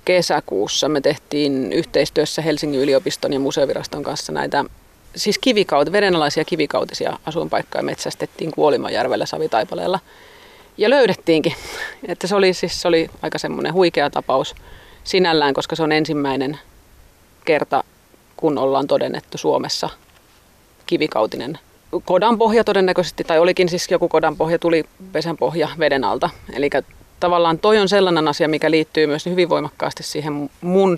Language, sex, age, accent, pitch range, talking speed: Finnish, female, 30-49, native, 150-185 Hz, 130 wpm